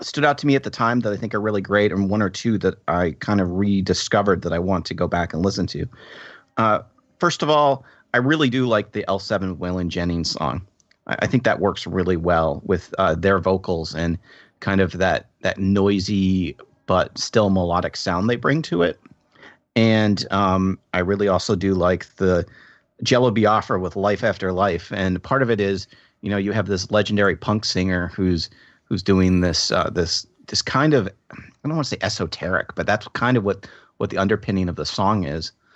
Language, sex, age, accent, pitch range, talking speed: English, male, 30-49, American, 90-105 Hz, 205 wpm